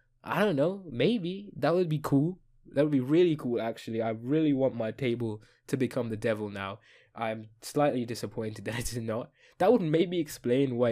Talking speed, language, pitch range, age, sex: 190 wpm, English, 115-155 Hz, 10-29, male